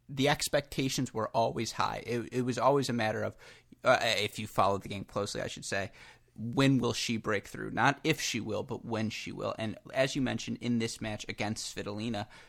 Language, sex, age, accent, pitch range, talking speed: English, male, 30-49, American, 110-130 Hz, 210 wpm